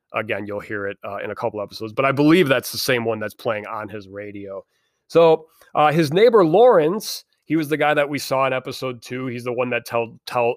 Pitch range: 120-175 Hz